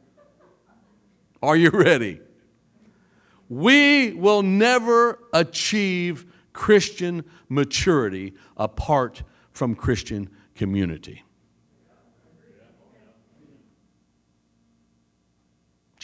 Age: 60-79